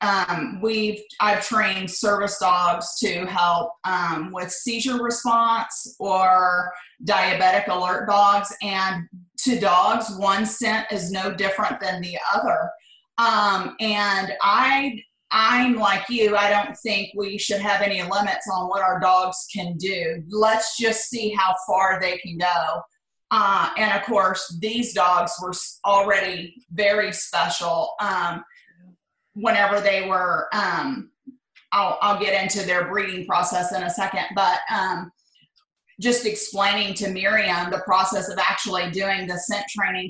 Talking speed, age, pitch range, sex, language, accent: 140 wpm, 30-49, 185-215 Hz, female, English, American